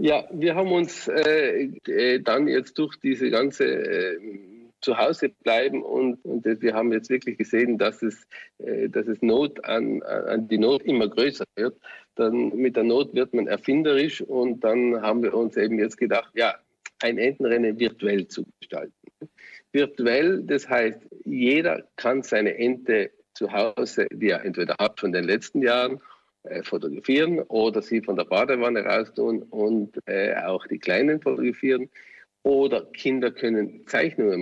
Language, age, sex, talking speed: German, 50-69, male, 155 wpm